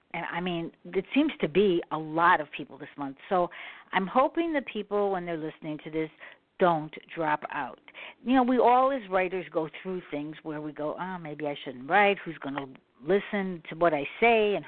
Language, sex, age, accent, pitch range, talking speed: English, female, 60-79, American, 160-200 Hz, 215 wpm